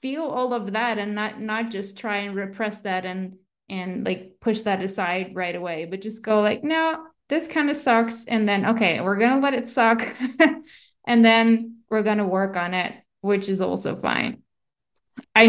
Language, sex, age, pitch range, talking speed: English, female, 20-39, 195-240 Hz, 200 wpm